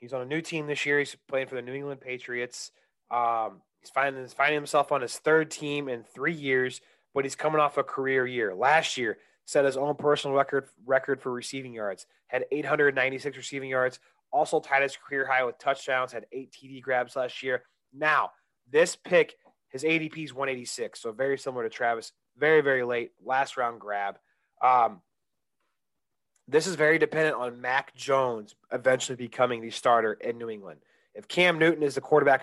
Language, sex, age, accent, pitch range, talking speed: English, male, 30-49, American, 120-140 Hz, 185 wpm